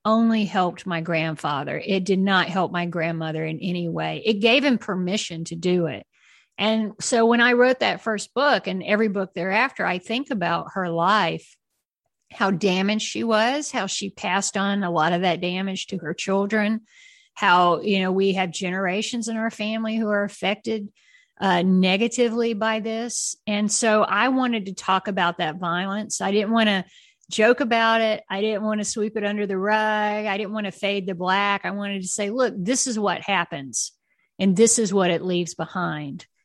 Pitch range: 180-215 Hz